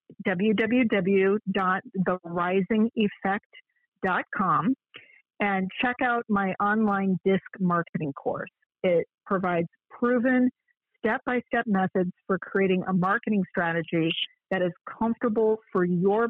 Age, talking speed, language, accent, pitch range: 50-69, 90 wpm, English, American, 185-235 Hz